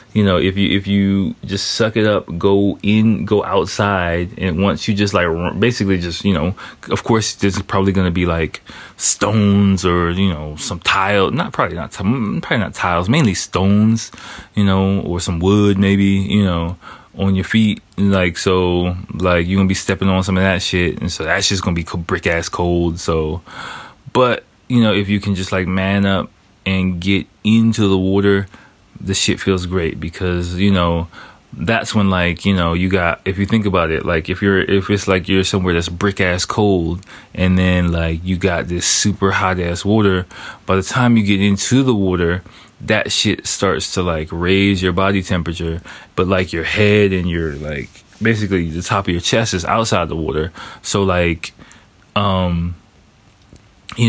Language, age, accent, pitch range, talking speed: English, 20-39, American, 90-100 Hz, 185 wpm